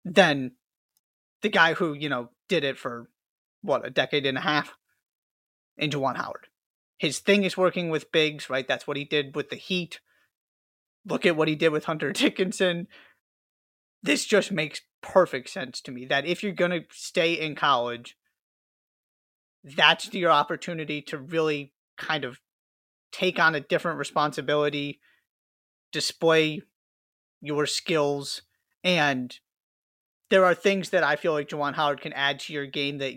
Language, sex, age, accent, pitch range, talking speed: English, male, 30-49, American, 140-175 Hz, 155 wpm